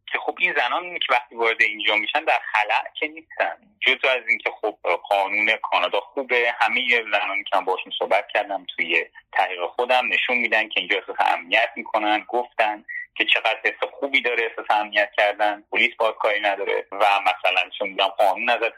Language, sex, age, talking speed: Persian, male, 30-49, 175 wpm